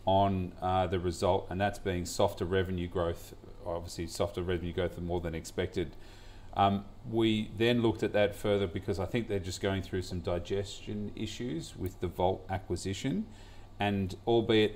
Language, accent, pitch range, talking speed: English, Australian, 90-100 Hz, 165 wpm